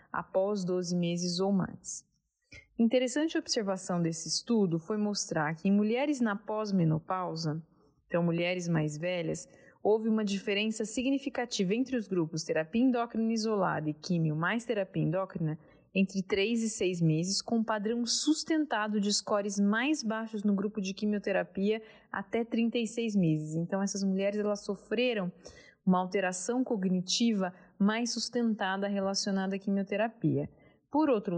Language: Portuguese